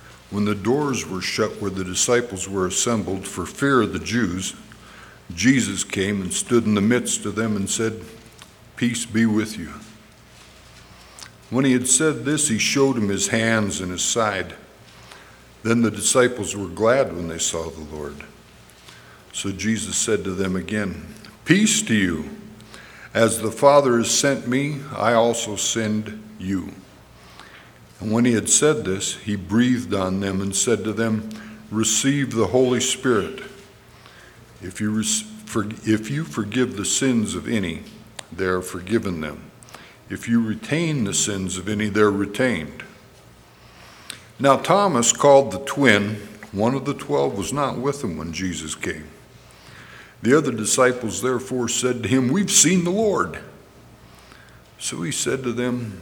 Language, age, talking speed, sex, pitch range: English, 60-79, 155 wpm, male, 100-125 Hz